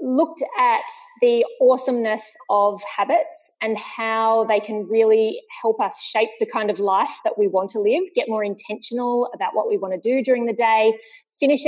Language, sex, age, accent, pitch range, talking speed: English, female, 20-39, Australian, 200-260 Hz, 185 wpm